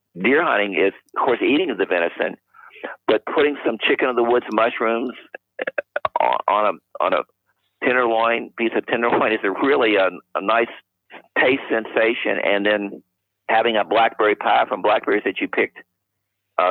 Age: 50-69